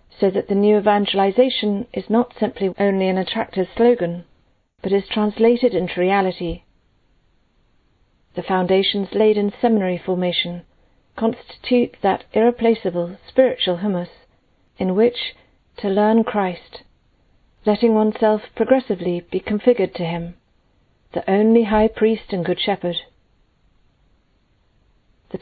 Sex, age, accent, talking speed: female, 40-59, British, 115 wpm